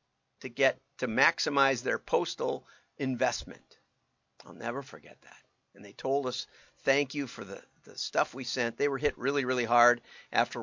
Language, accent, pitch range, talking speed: English, American, 110-140 Hz, 170 wpm